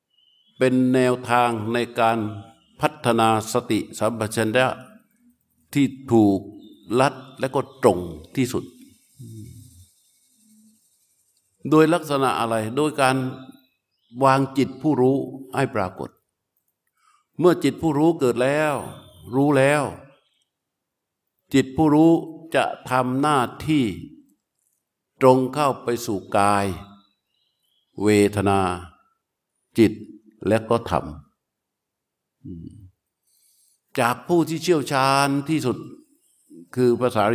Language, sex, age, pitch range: Thai, male, 60-79, 110-140 Hz